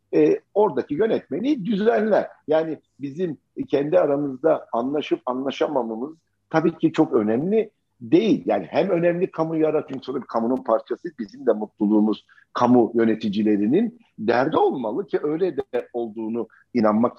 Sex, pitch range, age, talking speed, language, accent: male, 120-190 Hz, 50-69, 115 wpm, Turkish, native